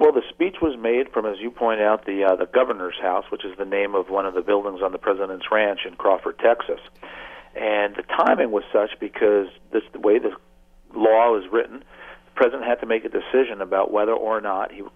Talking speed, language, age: 230 wpm, English, 50-69